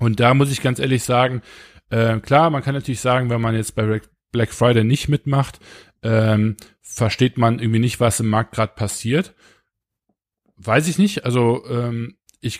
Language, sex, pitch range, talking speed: German, male, 110-140 Hz, 175 wpm